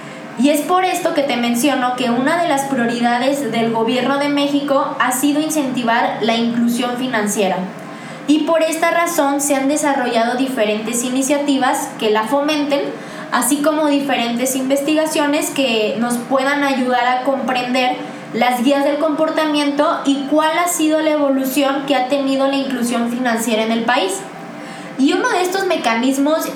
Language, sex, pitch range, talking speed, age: Spanish, female, 245-295 Hz, 155 wpm, 20-39